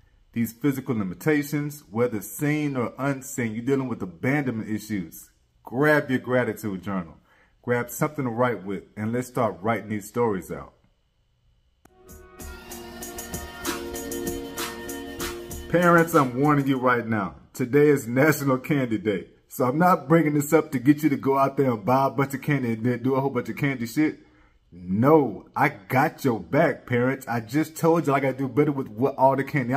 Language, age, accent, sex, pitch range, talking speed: English, 30-49, American, male, 115-150 Hz, 170 wpm